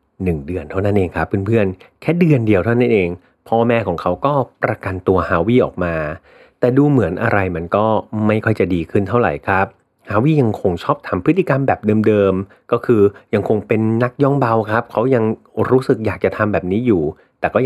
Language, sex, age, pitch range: Thai, male, 30-49, 95-120 Hz